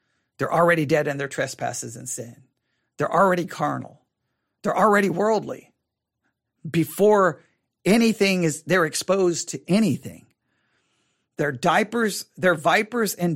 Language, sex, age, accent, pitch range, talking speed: English, male, 50-69, American, 145-190 Hz, 115 wpm